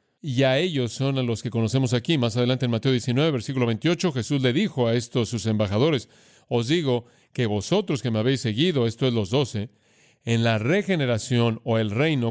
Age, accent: 40-59, Mexican